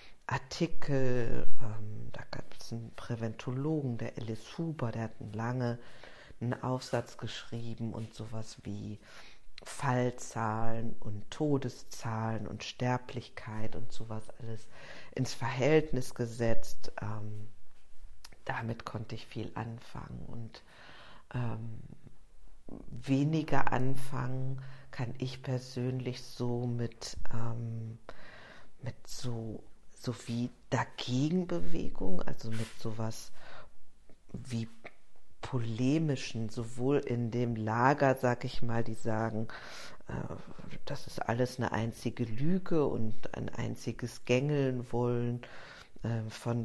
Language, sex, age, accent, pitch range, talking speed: German, female, 50-69, German, 115-130 Hz, 100 wpm